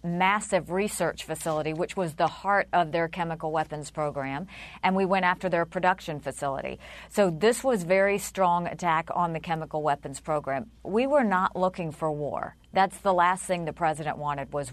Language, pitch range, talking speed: English, 160-185 Hz, 180 wpm